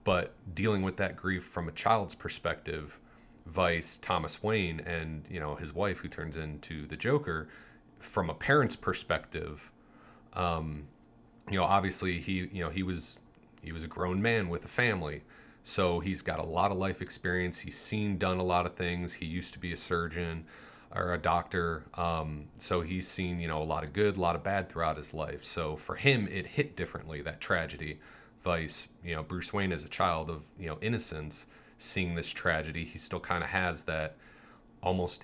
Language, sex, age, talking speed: English, male, 30-49, 195 wpm